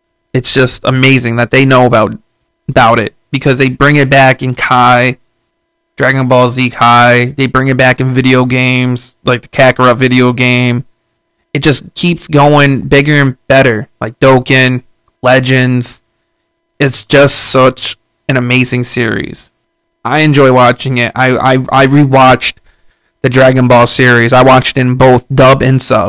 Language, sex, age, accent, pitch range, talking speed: English, male, 20-39, American, 125-140 Hz, 155 wpm